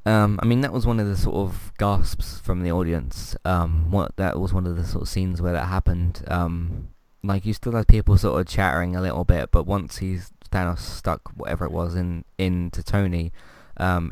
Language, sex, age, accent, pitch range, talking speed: English, male, 20-39, British, 85-100 Hz, 215 wpm